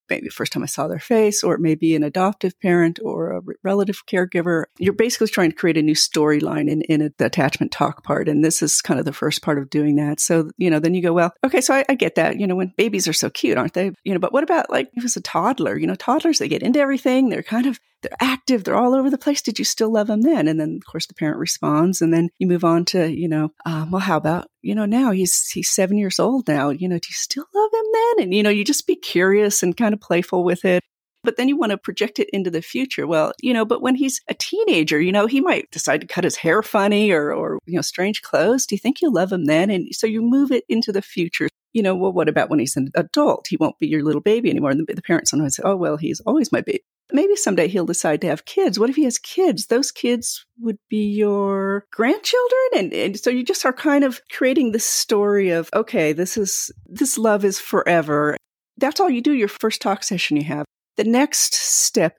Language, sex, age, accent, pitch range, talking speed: English, female, 40-59, American, 165-250 Hz, 265 wpm